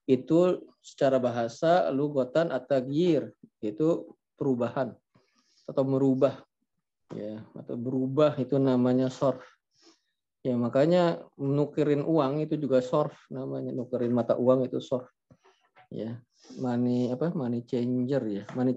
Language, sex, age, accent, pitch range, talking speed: Indonesian, male, 30-49, native, 125-155 Hz, 110 wpm